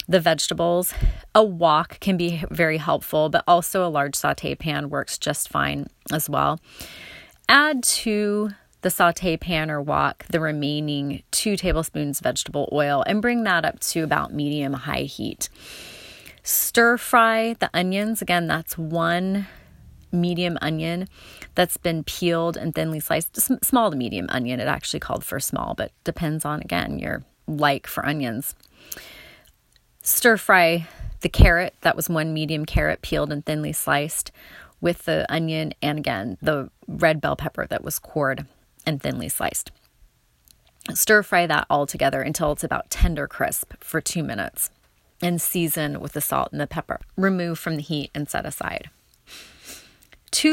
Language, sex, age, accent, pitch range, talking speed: English, female, 30-49, American, 150-185 Hz, 155 wpm